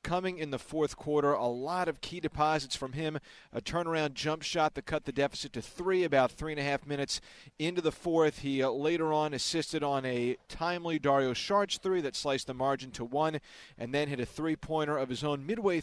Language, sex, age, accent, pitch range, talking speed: English, male, 40-59, American, 135-165 Hz, 210 wpm